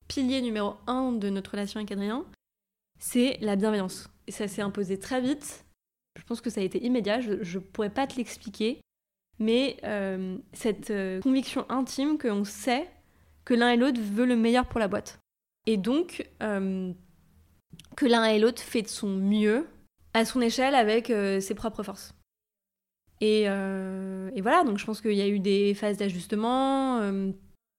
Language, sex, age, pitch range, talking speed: French, female, 20-39, 195-230 Hz, 175 wpm